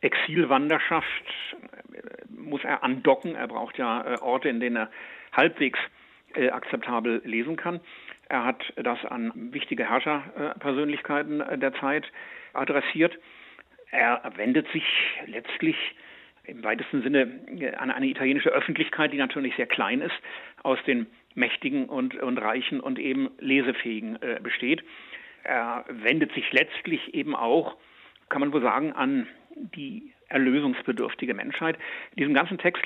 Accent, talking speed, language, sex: German, 135 wpm, German, male